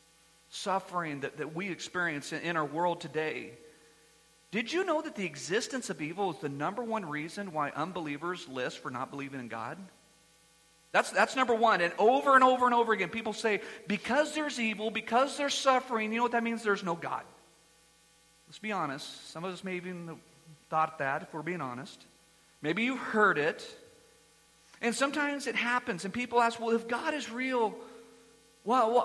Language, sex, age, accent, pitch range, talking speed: English, male, 40-59, American, 155-235 Hz, 185 wpm